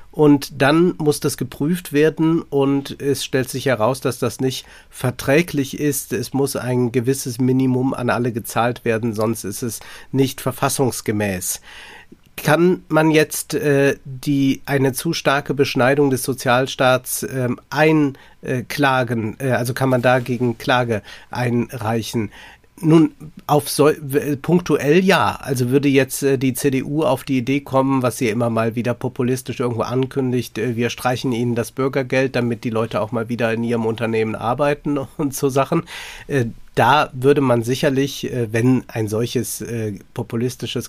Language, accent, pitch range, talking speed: German, German, 120-140 Hz, 150 wpm